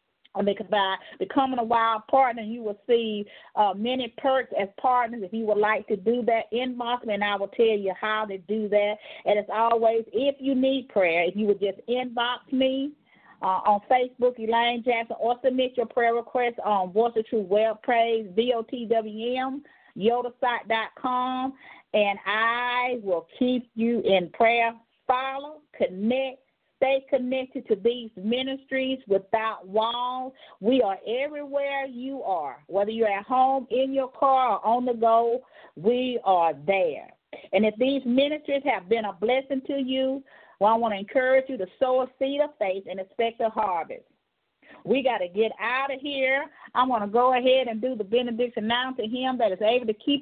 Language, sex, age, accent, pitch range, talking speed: English, female, 40-59, American, 215-270 Hz, 175 wpm